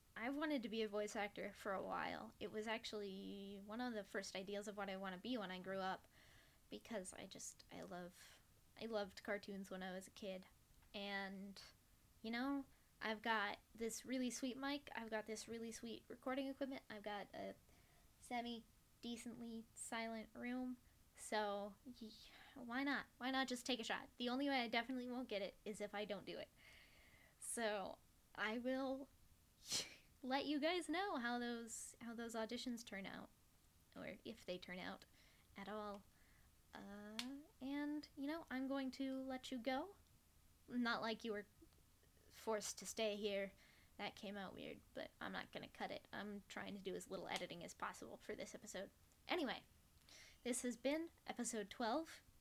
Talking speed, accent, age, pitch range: 175 wpm, American, 10-29, 205-260 Hz